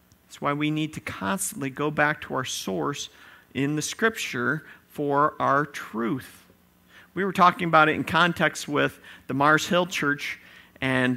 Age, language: 50-69, English